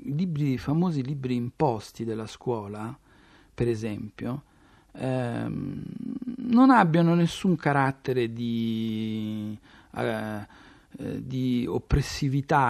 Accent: native